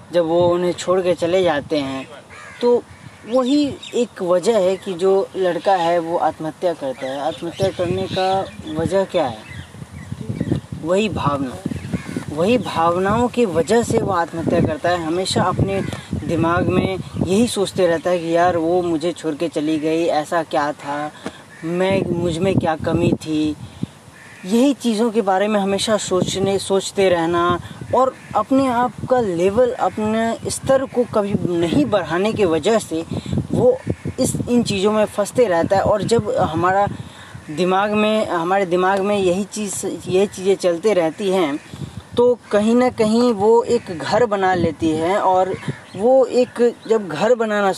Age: 20-39